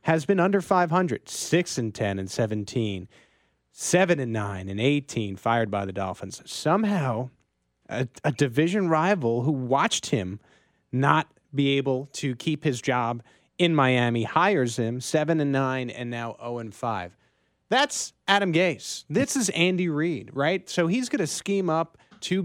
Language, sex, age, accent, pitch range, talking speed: English, male, 30-49, American, 125-165 Hz, 160 wpm